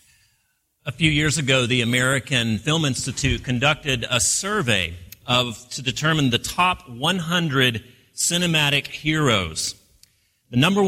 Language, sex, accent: English, male, American